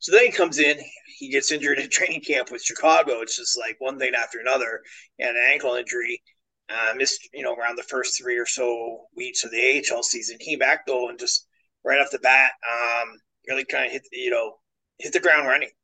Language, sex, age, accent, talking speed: English, male, 30-49, American, 225 wpm